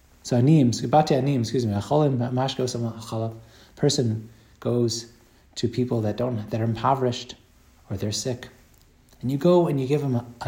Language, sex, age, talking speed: English, male, 30-49, 145 wpm